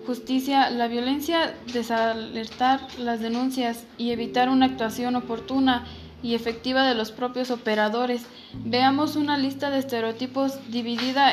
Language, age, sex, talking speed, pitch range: Spanish, 10-29, female, 120 wpm, 225-260 Hz